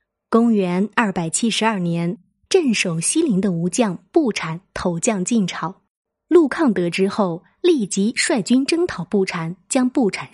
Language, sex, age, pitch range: Chinese, female, 20-39, 190-245 Hz